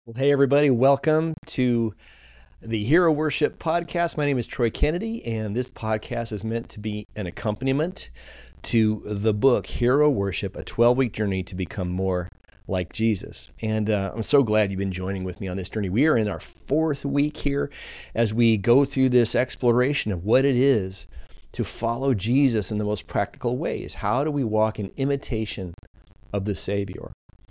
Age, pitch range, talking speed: 30-49, 100-130 Hz, 180 wpm